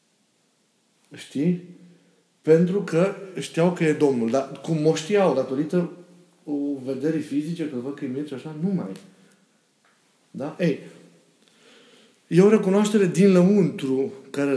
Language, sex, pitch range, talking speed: Romanian, male, 135-180 Hz, 130 wpm